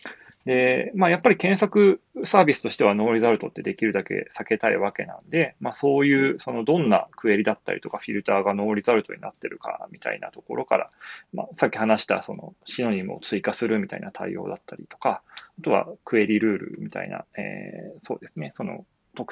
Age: 20-39